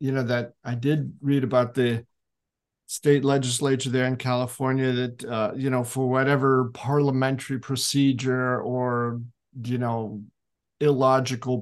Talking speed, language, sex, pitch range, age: 130 wpm, English, male, 125-140 Hz, 50-69